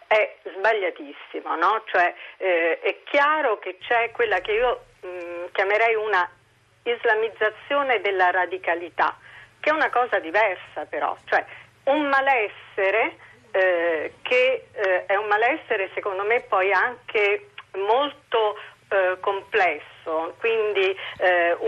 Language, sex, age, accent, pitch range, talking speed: Italian, female, 40-59, native, 185-275 Hz, 115 wpm